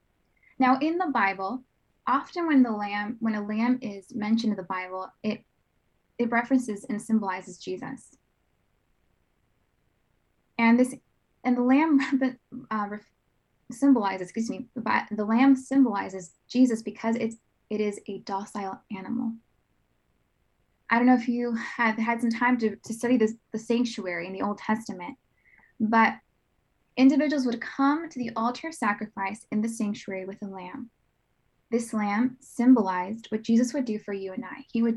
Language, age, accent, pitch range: English, 10-29, American, 210-250 Hz